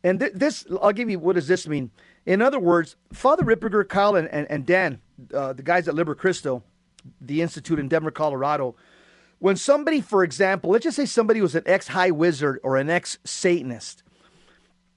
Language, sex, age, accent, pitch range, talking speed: English, male, 40-59, American, 160-200 Hz, 180 wpm